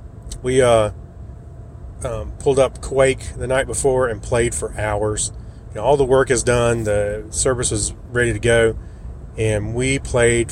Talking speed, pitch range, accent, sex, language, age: 155 wpm, 105-130 Hz, American, male, English, 30-49